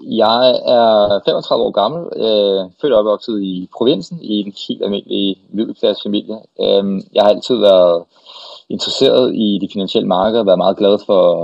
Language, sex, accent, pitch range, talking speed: Danish, male, native, 95-110 Hz, 175 wpm